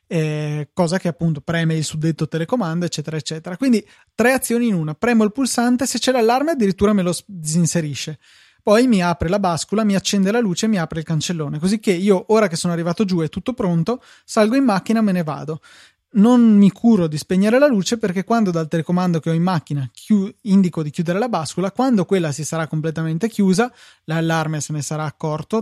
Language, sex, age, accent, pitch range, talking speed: Italian, male, 20-39, native, 160-210 Hz, 210 wpm